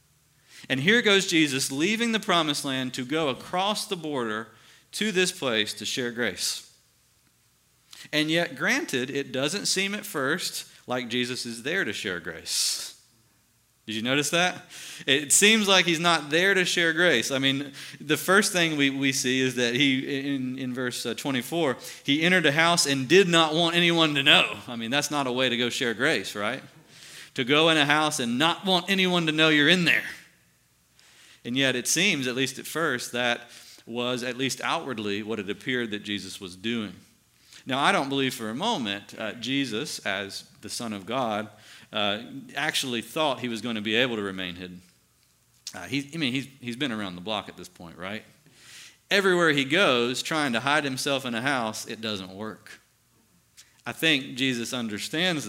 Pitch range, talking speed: 120-160 Hz, 190 wpm